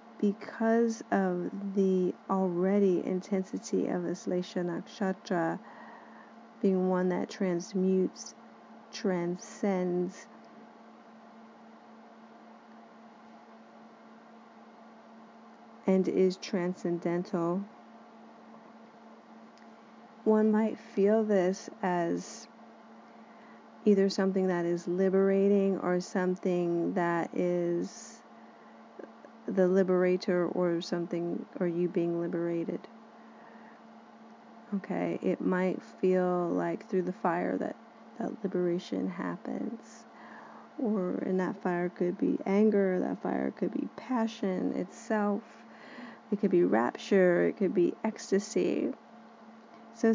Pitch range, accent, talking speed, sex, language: 180-225 Hz, American, 85 wpm, female, English